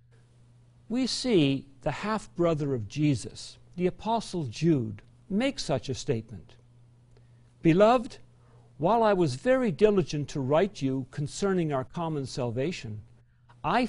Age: 60-79